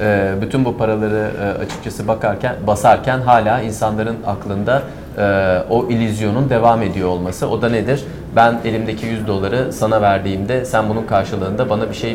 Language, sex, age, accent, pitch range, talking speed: Turkish, male, 30-49, native, 105-130 Hz, 145 wpm